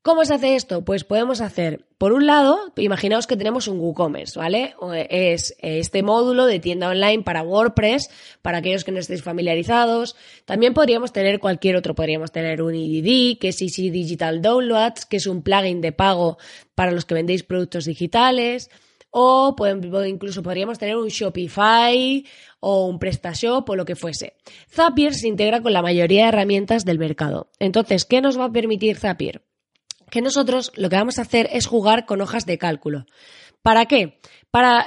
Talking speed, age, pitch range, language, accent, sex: 180 wpm, 20-39, 175-240 Hz, Spanish, Spanish, female